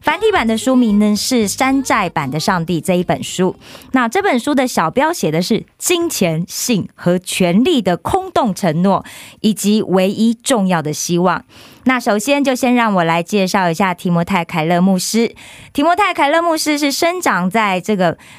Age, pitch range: 30-49, 180-250 Hz